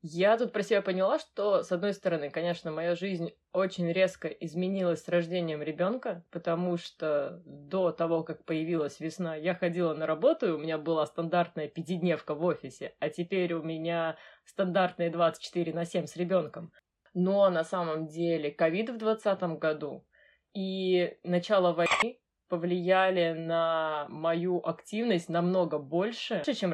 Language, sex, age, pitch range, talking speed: Russian, female, 20-39, 165-205 Hz, 145 wpm